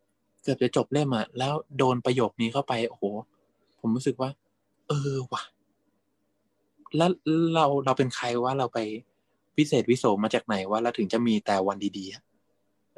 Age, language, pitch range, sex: 20-39, Thai, 105-150 Hz, male